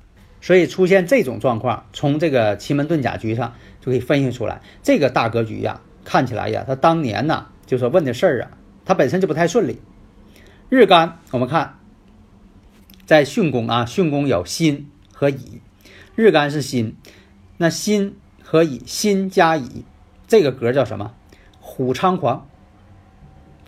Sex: male